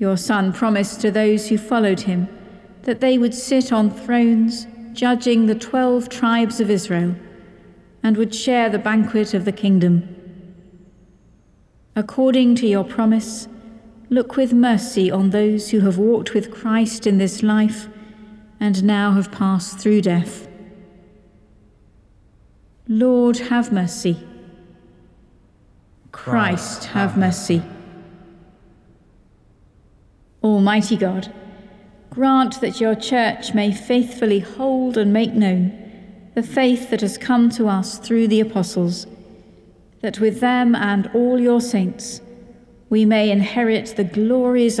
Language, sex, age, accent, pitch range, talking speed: English, female, 50-69, British, 195-235 Hz, 120 wpm